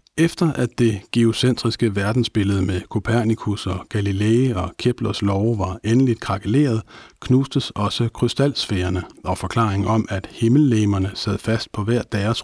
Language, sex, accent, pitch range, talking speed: Danish, male, native, 105-120 Hz, 135 wpm